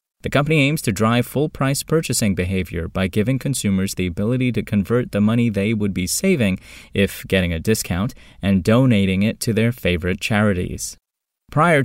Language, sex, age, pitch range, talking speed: English, male, 20-39, 95-130 Hz, 165 wpm